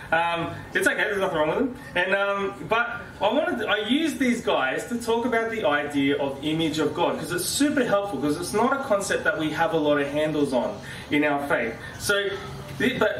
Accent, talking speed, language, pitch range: Australian, 215 wpm, English, 145-200 Hz